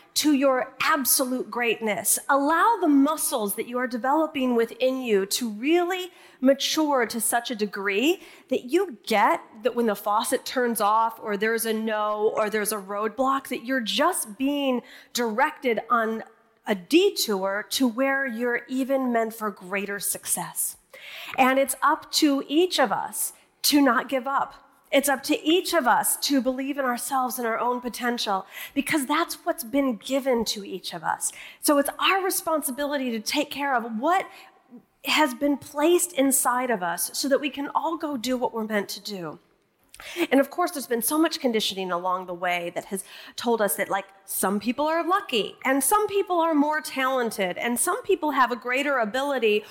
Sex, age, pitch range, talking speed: female, 30-49, 225-305 Hz, 180 wpm